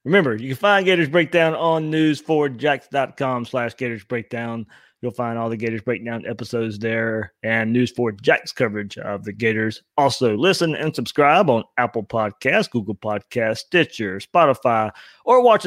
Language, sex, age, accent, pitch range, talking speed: English, male, 30-49, American, 115-145 Hz, 155 wpm